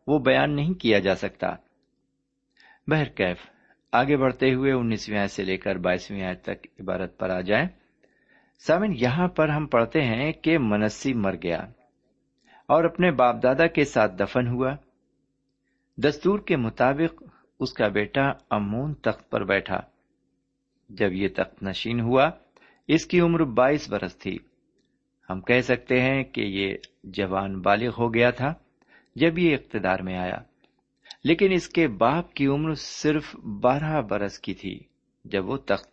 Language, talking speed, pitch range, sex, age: Urdu, 150 wpm, 105-150 Hz, male, 50-69